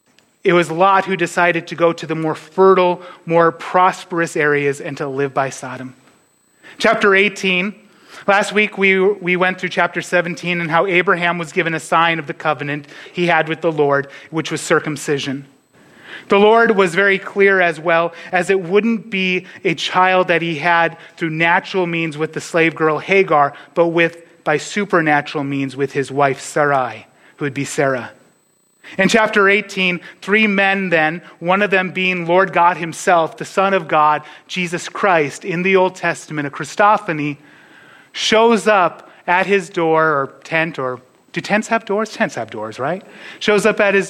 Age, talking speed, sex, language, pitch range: 30-49, 175 wpm, male, English, 160-200 Hz